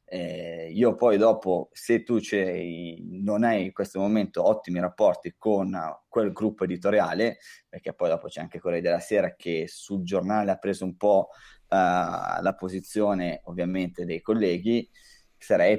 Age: 20-39